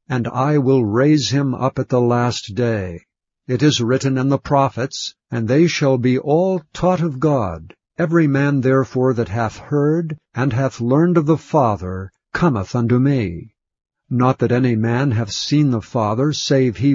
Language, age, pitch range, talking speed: English, 60-79, 115-145 Hz, 175 wpm